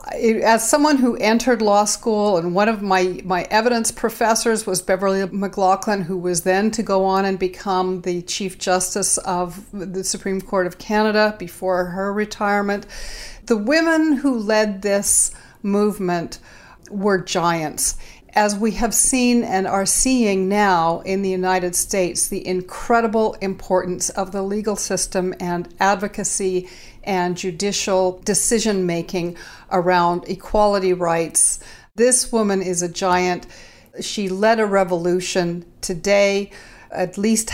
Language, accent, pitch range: English, American, 175-205 Hz